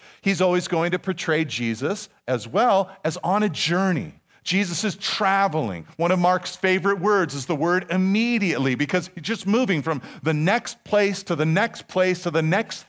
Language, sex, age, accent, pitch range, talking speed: English, male, 40-59, American, 125-180 Hz, 180 wpm